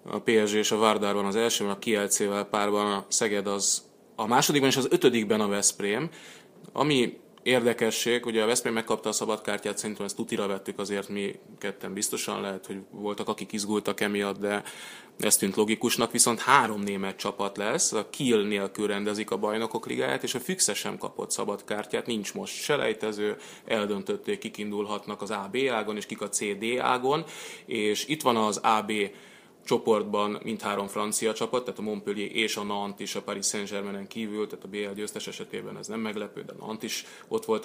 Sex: male